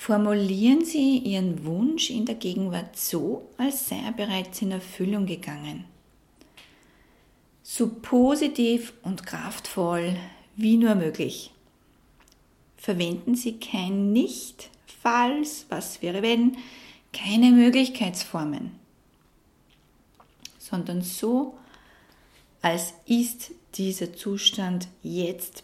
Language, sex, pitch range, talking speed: German, female, 185-240 Hz, 90 wpm